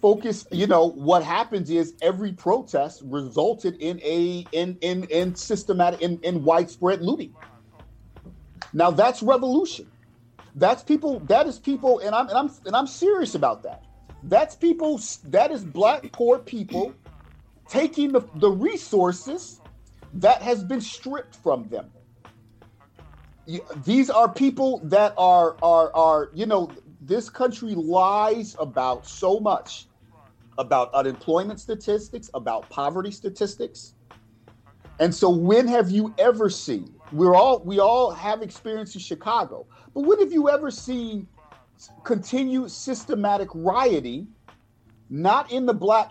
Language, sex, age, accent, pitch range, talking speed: English, male, 40-59, American, 150-225 Hz, 135 wpm